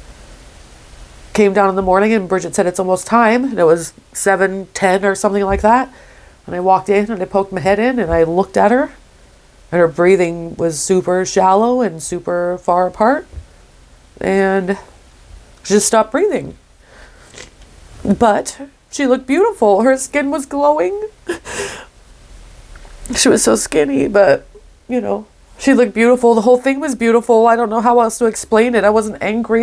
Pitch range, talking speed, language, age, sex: 170-225 Hz, 170 wpm, English, 30-49, female